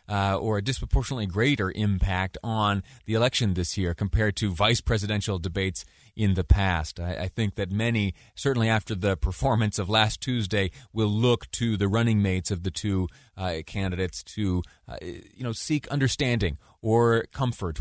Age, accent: 30-49, American